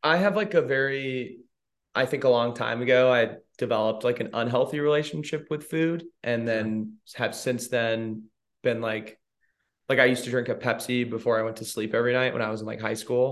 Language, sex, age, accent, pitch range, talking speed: English, male, 20-39, American, 110-130 Hz, 210 wpm